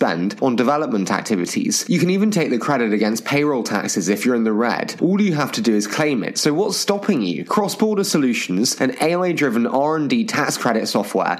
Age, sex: 20-39, male